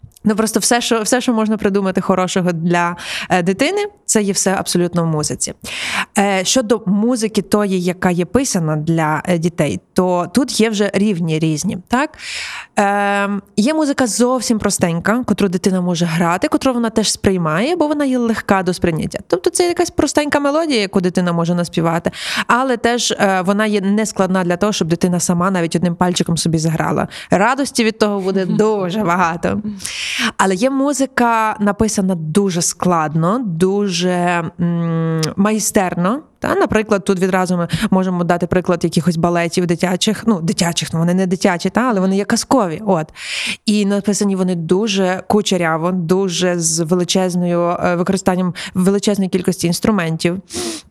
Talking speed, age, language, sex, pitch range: 155 wpm, 20-39, Ukrainian, female, 180-215 Hz